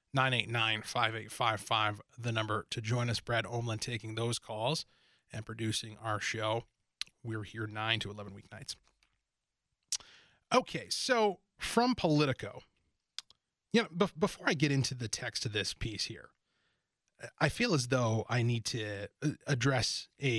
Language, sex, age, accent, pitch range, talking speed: English, male, 30-49, American, 110-160 Hz, 125 wpm